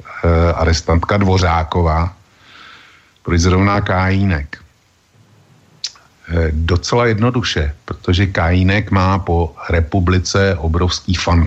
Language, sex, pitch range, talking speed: Slovak, male, 85-100 Hz, 85 wpm